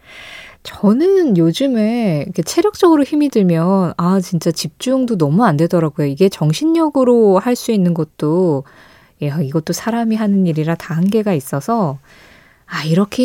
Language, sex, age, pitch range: Korean, female, 20-39, 165-245 Hz